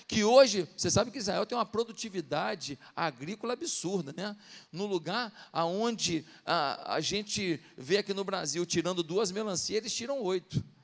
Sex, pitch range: male, 180-240 Hz